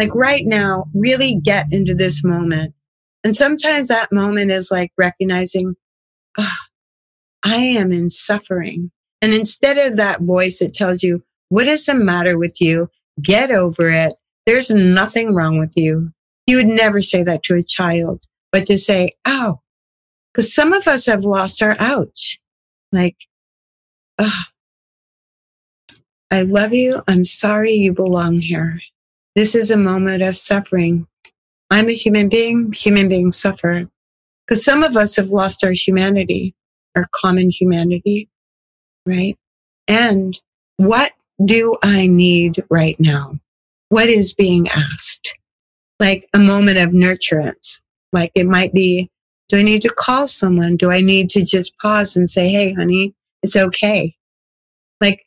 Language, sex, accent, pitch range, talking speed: English, female, American, 175-210 Hz, 145 wpm